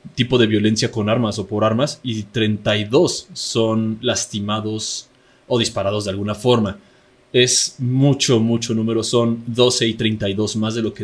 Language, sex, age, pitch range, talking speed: Spanish, male, 20-39, 110-125 Hz, 160 wpm